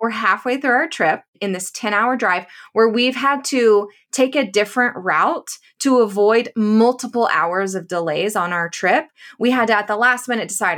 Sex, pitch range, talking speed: female, 190-255 Hz, 195 wpm